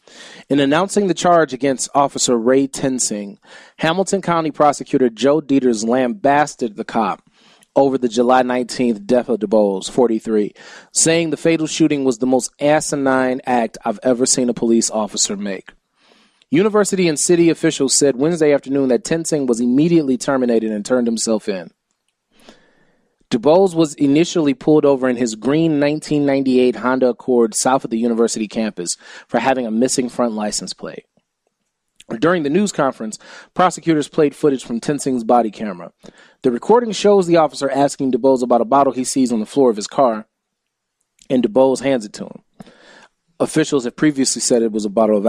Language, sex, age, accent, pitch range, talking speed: English, male, 30-49, American, 120-155 Hz, 165 wpm